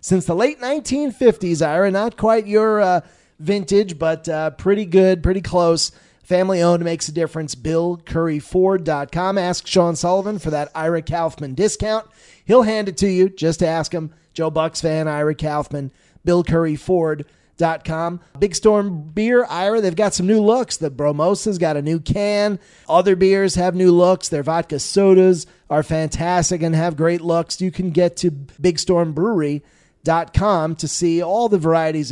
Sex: male